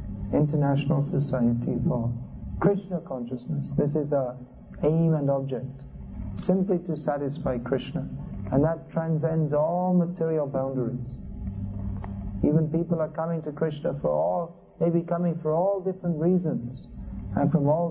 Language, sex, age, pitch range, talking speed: English, male, 50-69, 125-160 Hz, 125 wpm